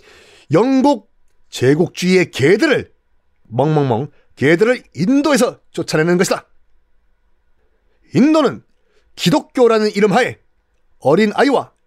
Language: Korean